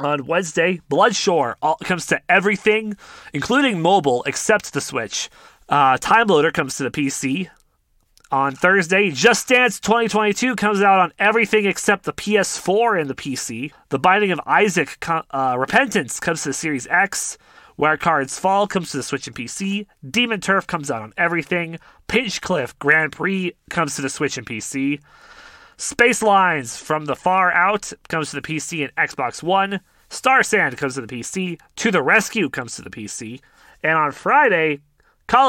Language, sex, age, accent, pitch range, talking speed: English, male, 30-49, American, 145-200 Hz, 170 wpm